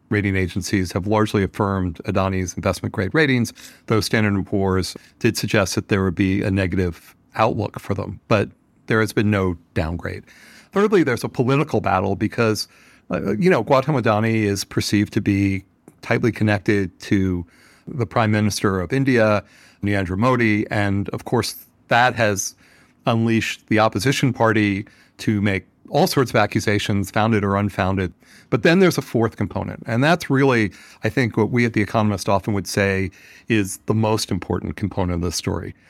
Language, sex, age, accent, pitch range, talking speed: English, male, 40-59, American, 100-125 Hz, 160 wpm